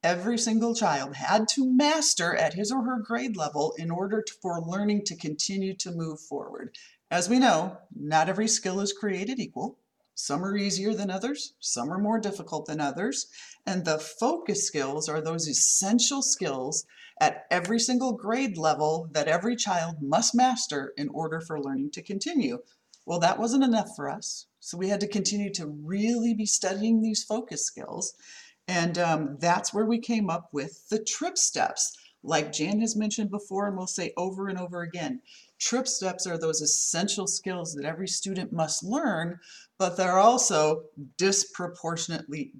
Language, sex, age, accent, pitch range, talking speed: English, female, 40-59, American, 165-225 Hz, 170 wpm